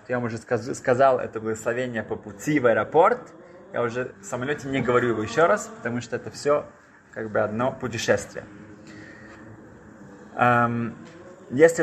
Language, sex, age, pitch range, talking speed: Russian, male, 20-39, 105-135 Hz, 140 wpm